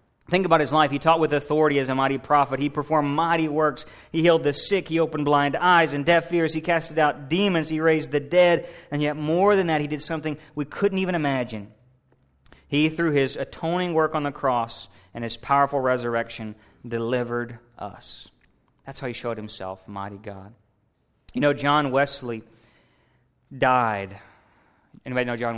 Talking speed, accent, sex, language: 180 wpm, American, male, English